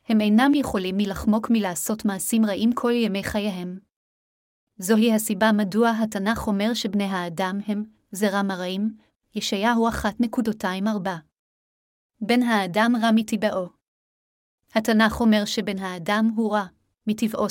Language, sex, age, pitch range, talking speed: Hebrew, female, 30-49, 200-230 Hz, 115 wpm